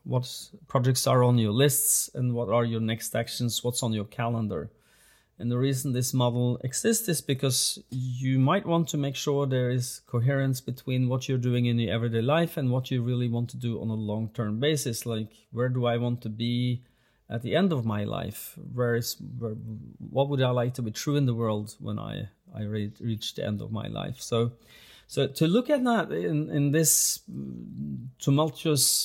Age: 30-49